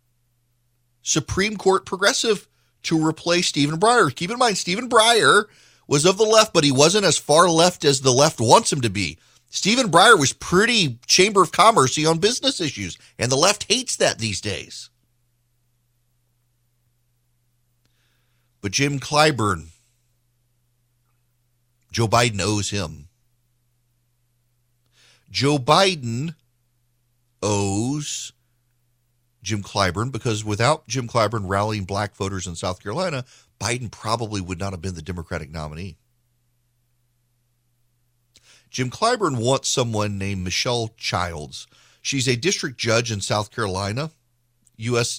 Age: 40-59